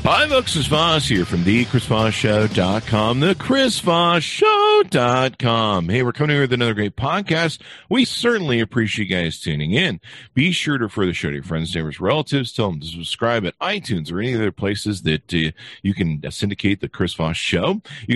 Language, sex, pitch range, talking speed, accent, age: English, male, 85-130 Hz, 200 wpm, American, 50-69